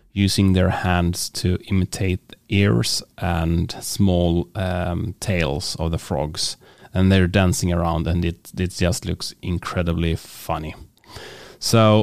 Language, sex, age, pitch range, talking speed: English, male, 30-49, 90-110 Hz, 125 wpm